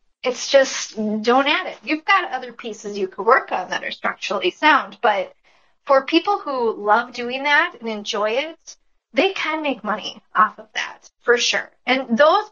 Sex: female